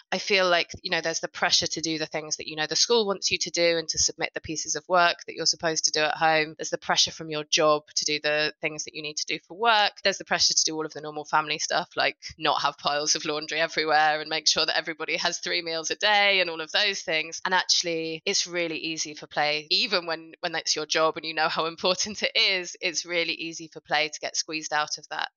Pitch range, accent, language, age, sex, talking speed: 155-180 Hz, British, English, 20-39, female, 275 wpm